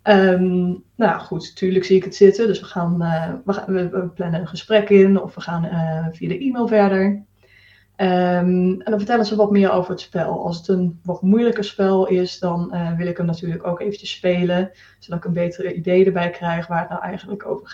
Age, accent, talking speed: 20-39, Dutch, 225 wpm